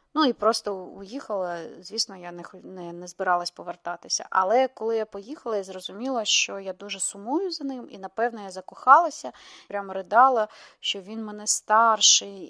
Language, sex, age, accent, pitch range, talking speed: Ukrainian, female, 20-39, native, 190-245 Hz, 160 wpm